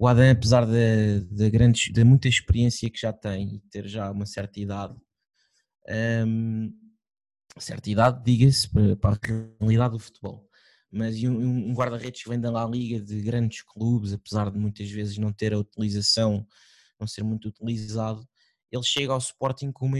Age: 20-39